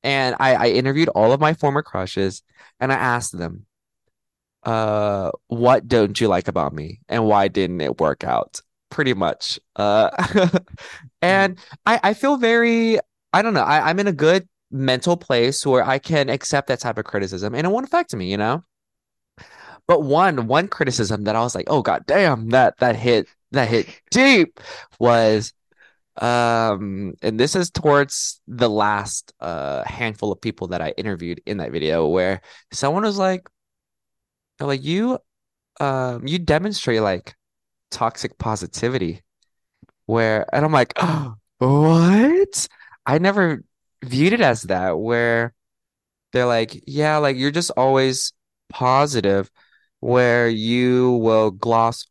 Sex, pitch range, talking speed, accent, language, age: male, 105-150 Hz, 150 wpm, American, English, 20-39